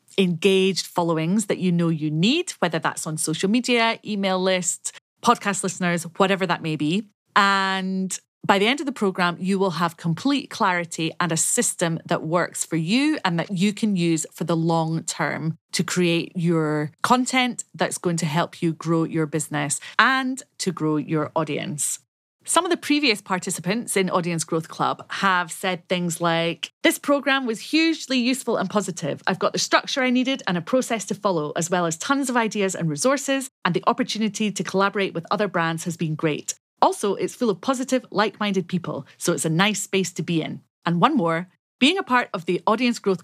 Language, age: English, 30-49